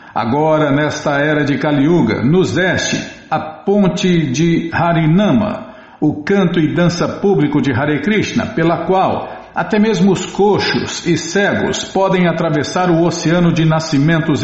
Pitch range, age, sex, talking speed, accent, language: 140-175 Hz, 60-79, male, 135 wpm, Brazilian, Portuguese